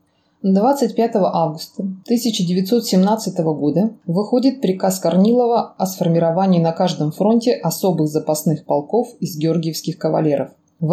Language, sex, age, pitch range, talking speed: Russian, female, 20-39, 160-210 Hz, 105 wpm